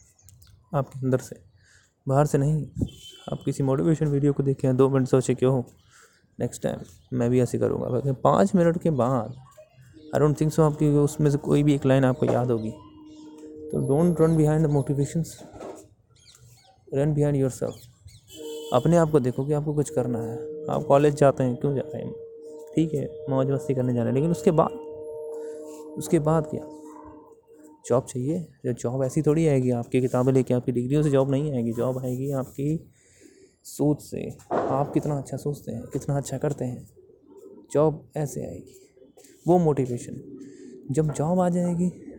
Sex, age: male, 20-39